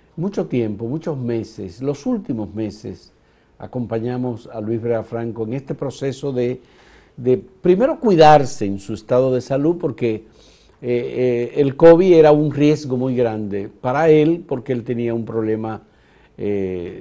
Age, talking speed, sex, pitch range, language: 50-69, 145 wpm, male, 115-160 Hz, Spanish